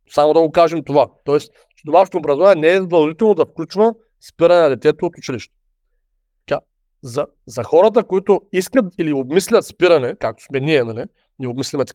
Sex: male